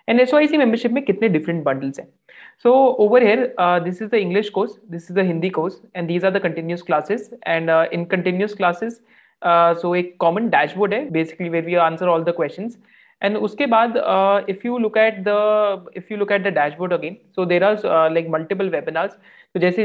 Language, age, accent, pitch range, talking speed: Hindi, 30-49, native, 170-220 Hz, 205 wpm